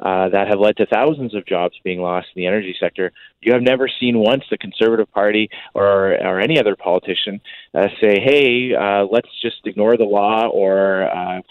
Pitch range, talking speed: 95-115 Hz, 200 wpm